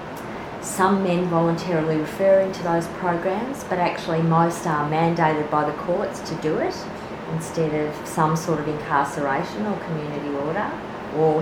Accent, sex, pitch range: Australian, female, 155-185 Hz